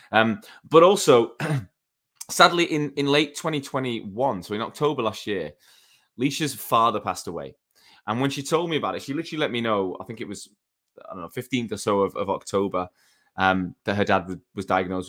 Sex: male